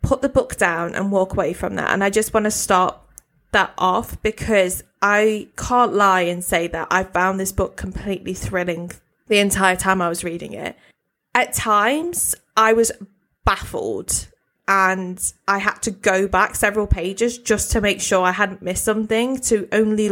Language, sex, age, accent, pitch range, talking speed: English, female, 20-39, British, 185-220 Hz, 180 wpm